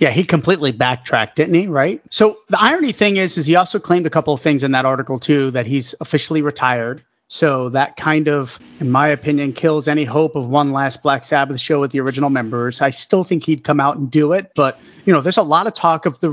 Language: English